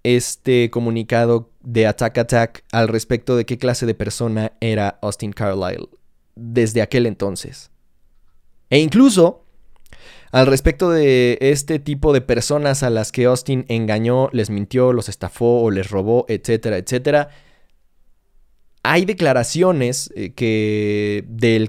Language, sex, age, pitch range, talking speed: Spanish, male, 20-39, 110-135 Hz, 125 wpm